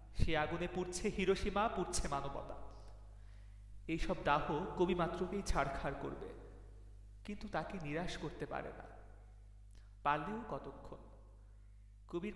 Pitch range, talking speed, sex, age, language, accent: 130-190 Hz, 100 wpm, male, 30-49, Bengali, native